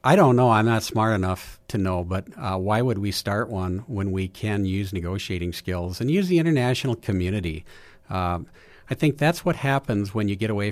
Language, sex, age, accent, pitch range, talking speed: English, male, 50-69, American, 95-125 Hz, 205 wpm